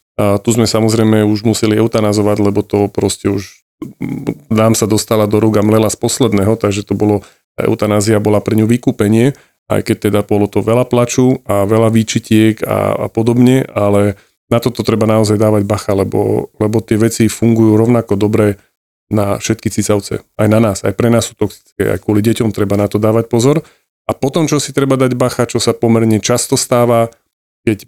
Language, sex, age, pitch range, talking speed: Slovak, male, 30-49, 105-120 Hz, 185 wpm